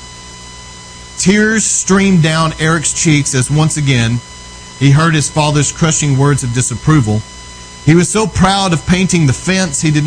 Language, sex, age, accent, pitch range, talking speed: English, male, 40-59, American, 120-165 Hz, 155 wpm